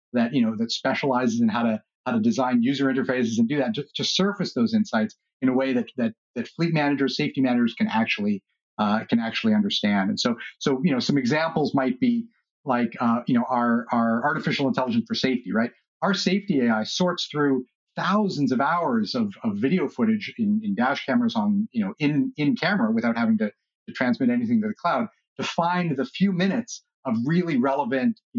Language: English